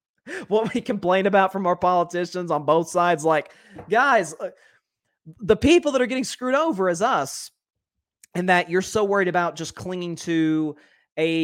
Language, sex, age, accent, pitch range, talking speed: English, male, 30-49, American, 135-180 Hz, 165 wpm